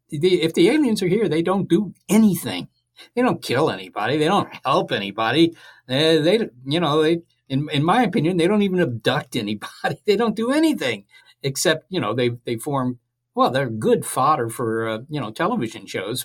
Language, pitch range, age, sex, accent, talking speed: English, 125-165 Hz, 60-79, male, American, 190 wpm